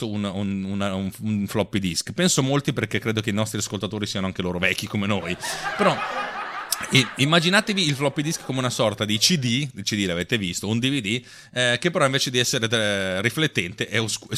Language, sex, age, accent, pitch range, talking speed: Italian, male, 30-49, native, 100-140 Hz, 190 wpm